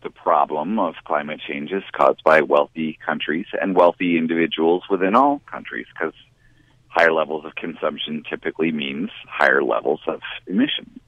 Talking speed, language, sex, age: 150 wpm, English, male, 40-59